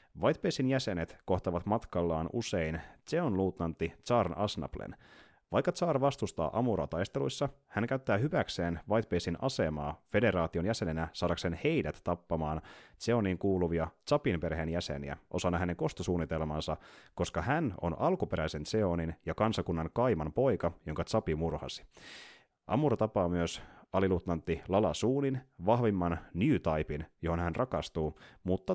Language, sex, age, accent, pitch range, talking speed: Finnish, male, 30-49, native, 85-105 Hz, 120 wpm